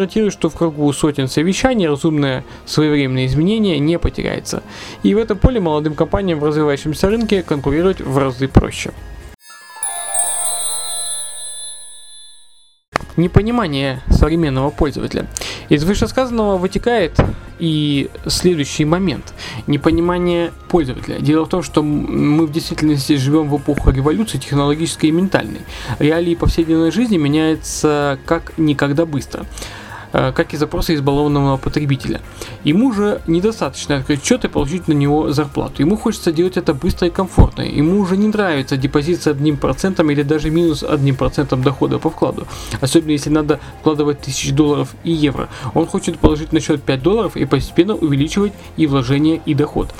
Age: 20-39